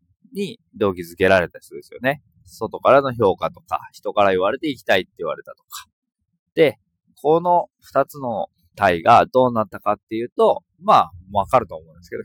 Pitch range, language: 90-140 Hz, Japanese